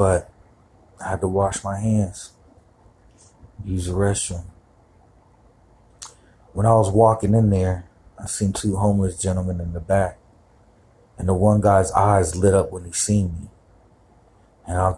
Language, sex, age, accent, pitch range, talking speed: English, male, 30-49, American, 95-110 Hz, 150 wpm